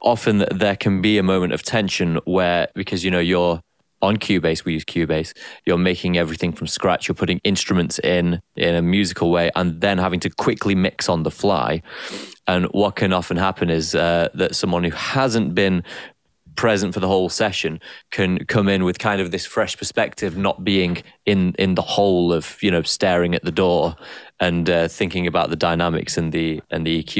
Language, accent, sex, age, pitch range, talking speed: English, British, male, 20-39, 85-105 Hz, 205 wpm